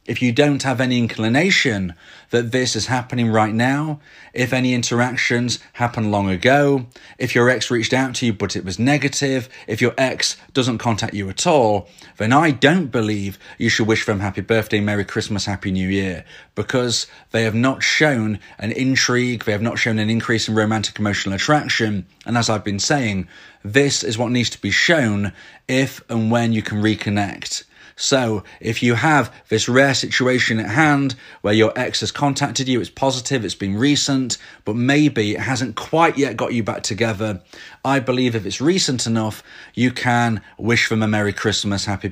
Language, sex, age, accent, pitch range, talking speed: English, male, 30-49, British, 105-130 Hz, 185 wpm